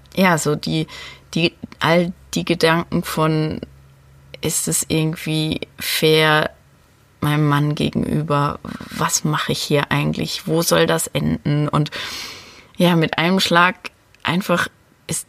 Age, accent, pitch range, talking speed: 30-49, German, 125-165 Hz, 120 wpm